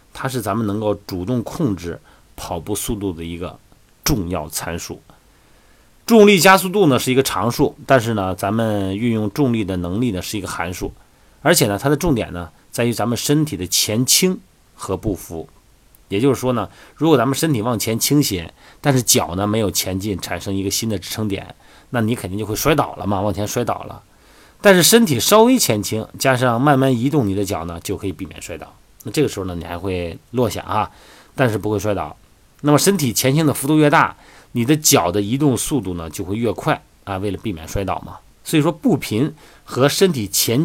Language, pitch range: Chinese, 95-135 Hz